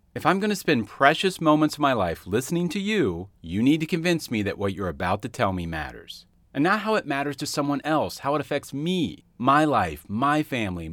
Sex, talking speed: male, 225 wpm